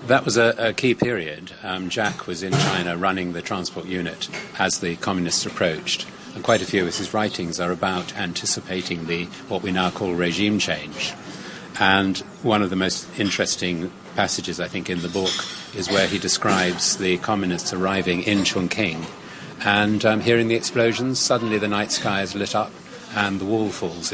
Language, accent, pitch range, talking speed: English, British, 90-110 Hz, 180 wpm